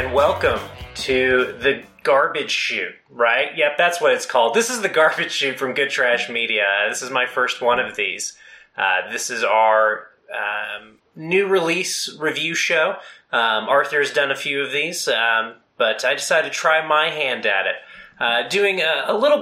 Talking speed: 180 wpm